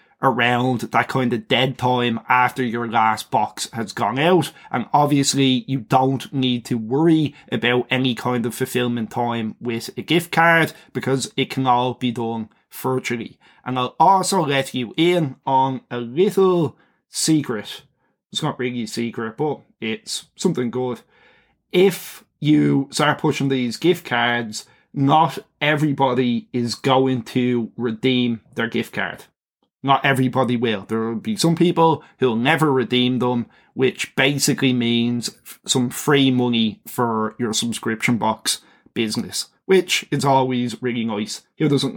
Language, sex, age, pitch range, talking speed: English, male, 20-39, 120-150 Hz, 150 wpm